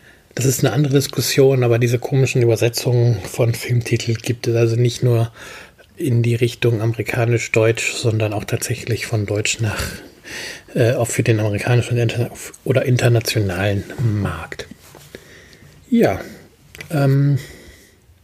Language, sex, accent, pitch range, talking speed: German, male, German, 115-130 Hz, 120 wpm